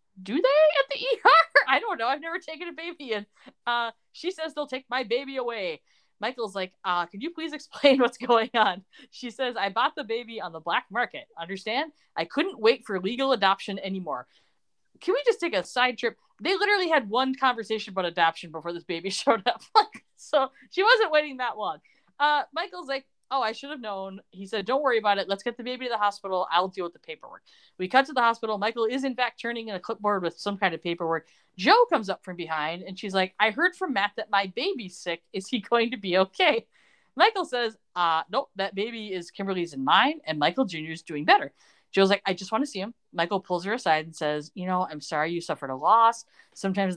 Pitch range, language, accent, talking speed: 185-270 Hz, English, American, 230 wpm